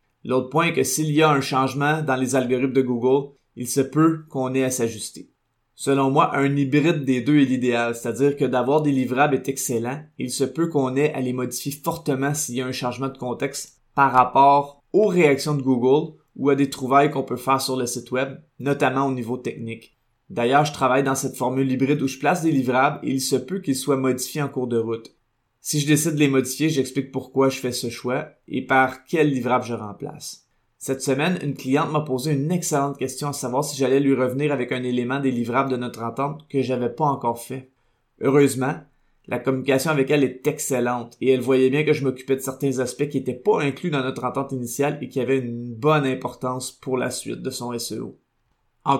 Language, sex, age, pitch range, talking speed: French, male, 20-39, 125-145 Hz, 225 wpm